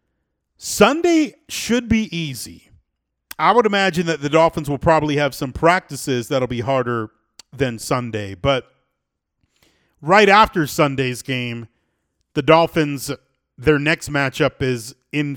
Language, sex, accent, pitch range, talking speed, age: English, male, American, 110-160 Hz, 125 wpm, 40-59